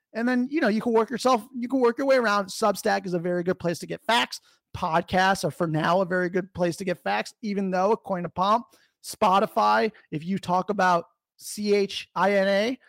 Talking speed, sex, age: 215 wpm, male, 30-49